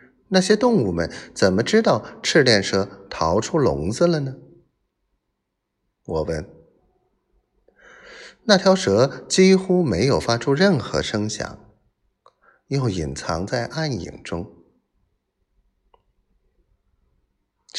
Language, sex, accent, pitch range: Chinese, male, native, 90-150 Hz